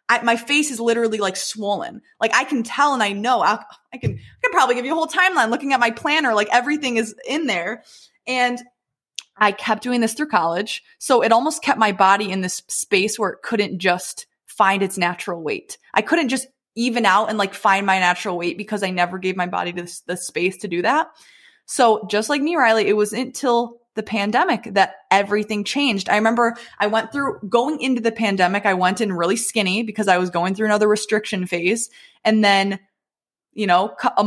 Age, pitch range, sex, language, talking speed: 20-39, 195-245 Hz, female, English, 215 wpm